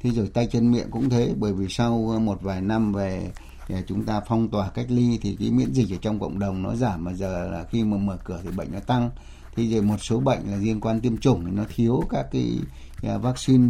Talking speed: 250 wpm